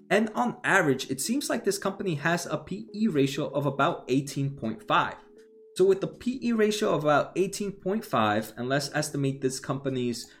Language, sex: English, male